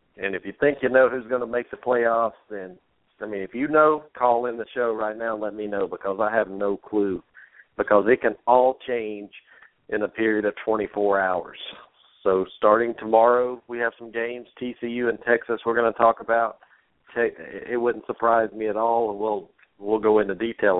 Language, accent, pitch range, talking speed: English, American, 105-115 Hz, 205 wpm